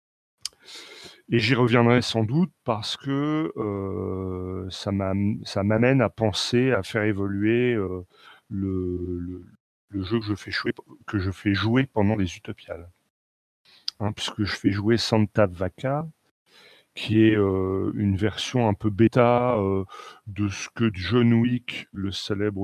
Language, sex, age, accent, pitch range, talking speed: French, male, 40-59, French, 95-115 Hz, 150 wpm